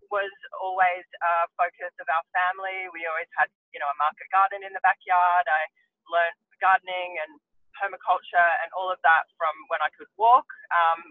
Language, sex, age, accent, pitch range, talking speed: English, female, 20-39, Australian, 170-255 Hz, 180 wpm